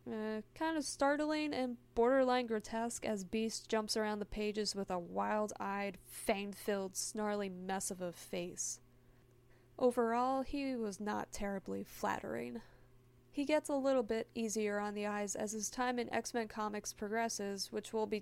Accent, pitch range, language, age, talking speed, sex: American, 195-245 Hz, English, 20-39, 155 wpm, female